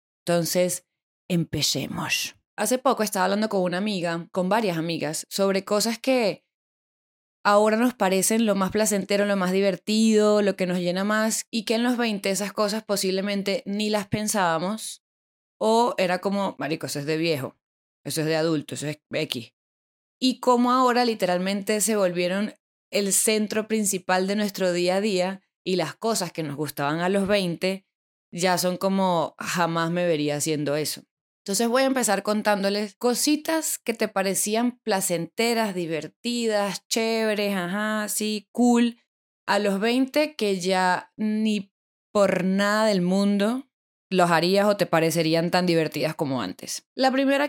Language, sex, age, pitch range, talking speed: Spanish, female, 20-39, 180-220 Hz, 155 wpm